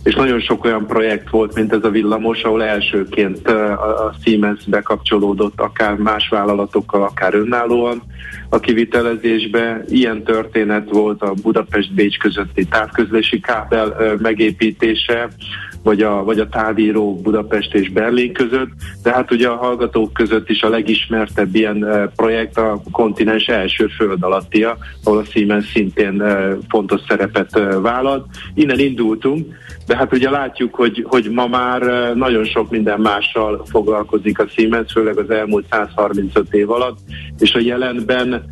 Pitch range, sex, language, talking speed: 105-115 Hz, male, Hungarian, 140 wpm